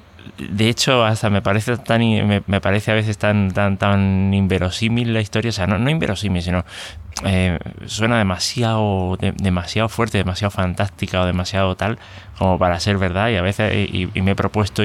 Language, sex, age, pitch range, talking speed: Spanish, male, 20-39, 90-105 Hz, 180 wpm